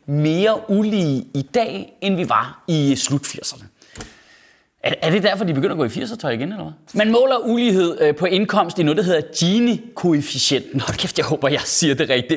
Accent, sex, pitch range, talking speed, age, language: native, male, 155-240 Hz, 200 wpm, 30-49, Danish